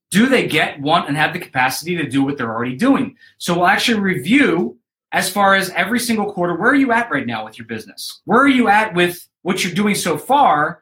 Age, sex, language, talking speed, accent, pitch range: 30-49, male, English, 240 wpm, American, 175-245 Hz